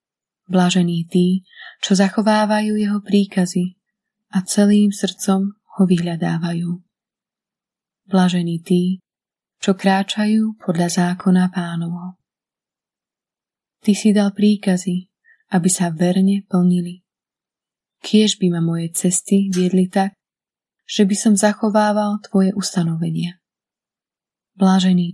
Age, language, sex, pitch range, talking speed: 20-39, Slovak, female, 180-205 Hz, 95 wpm